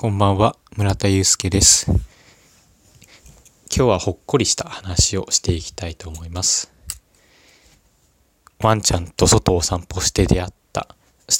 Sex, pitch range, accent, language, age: male, 90-110 Hz, native, Japanese, 20-39